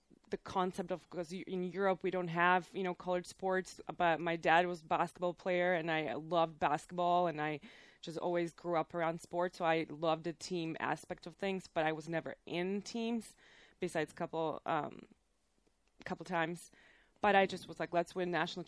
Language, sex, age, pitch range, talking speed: English, female, 20-39, 165-185 Hz, 195 wpm